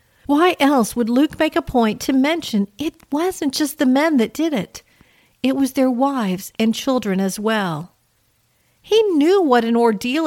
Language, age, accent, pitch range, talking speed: English, 50-69, American, 195-270 Hz, 175 wpm